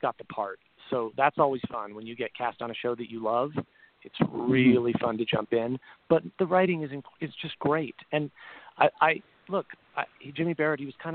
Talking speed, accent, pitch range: 220 wpm, American, 120-150 Hz